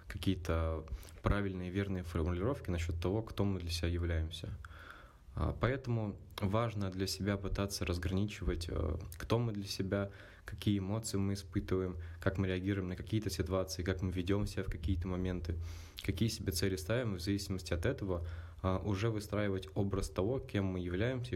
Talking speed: 150 wpm